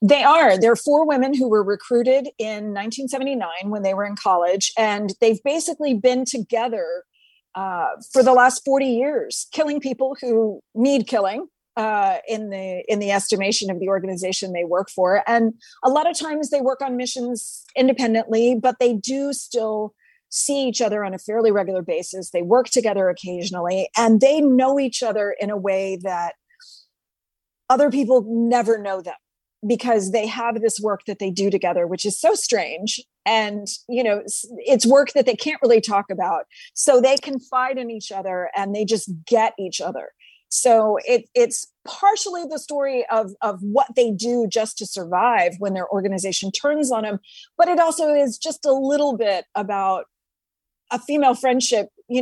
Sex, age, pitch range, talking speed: female, 40-59, 200-265 Hz, 175 wpm